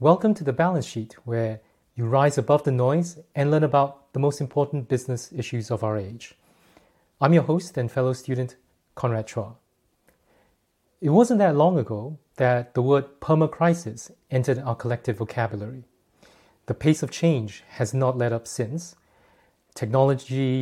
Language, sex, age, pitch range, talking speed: English, male, 30-49, 120-145 Hz, 155 wpm